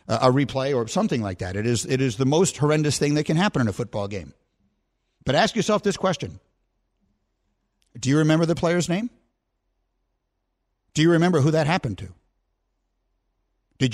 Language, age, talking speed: English, 50-69, 170 wpm